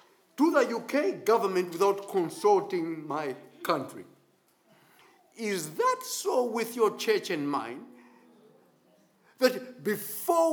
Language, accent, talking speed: English, South African, 105 wpm